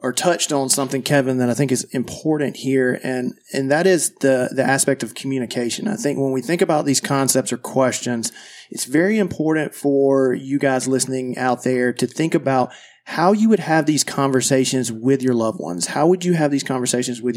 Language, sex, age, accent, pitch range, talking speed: English, male, 30-49, American, 125-150 Hz, 205 wpm